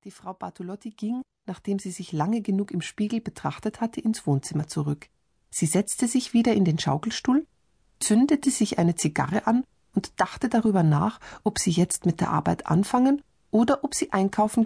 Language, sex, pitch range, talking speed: German, female, 170-235 Hz, 175 wpm